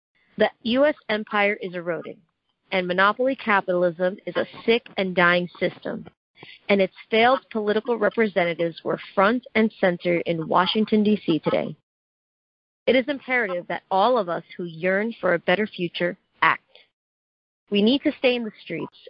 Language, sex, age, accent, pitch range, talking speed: English, female, 40-59, American, 180-225 Hz, 150 wpm